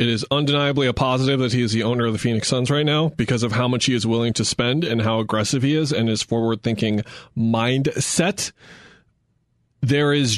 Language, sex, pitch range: English, male, 115-135 Hz